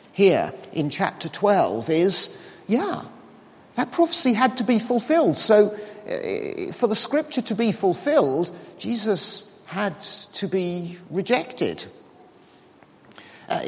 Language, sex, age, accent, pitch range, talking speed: English, male, 50-69, British, 160-235 Hz, 110 wpm